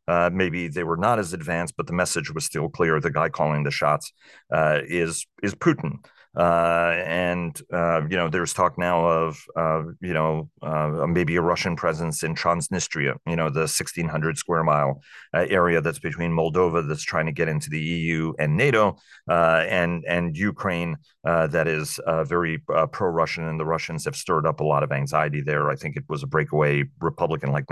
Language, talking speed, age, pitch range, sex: English, 200 wpm, 30-49, 80-105 Hz, male